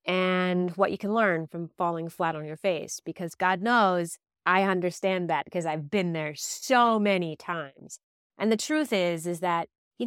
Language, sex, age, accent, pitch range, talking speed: English, female, 30-49, American, 175-235 Hz, 185 wpm